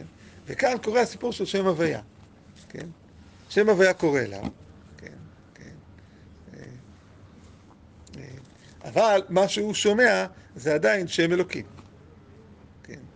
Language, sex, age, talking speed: Hebrew, male, 50-69, 110 wpm